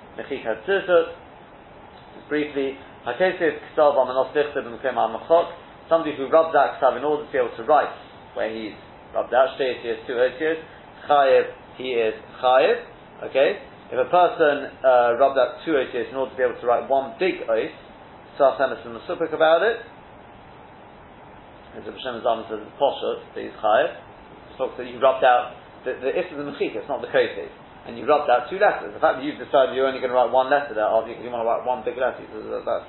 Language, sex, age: English, male, 40-59